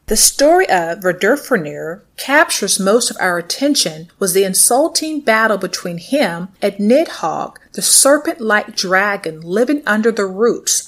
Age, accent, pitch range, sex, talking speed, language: 40-59, American, 180-255 Hz, female, 130 wpm, English